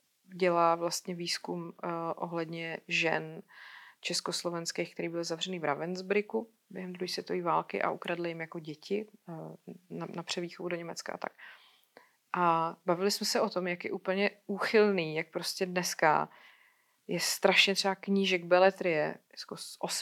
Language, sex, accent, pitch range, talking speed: Czech, female, native, 170-190 Hz, 145 wpm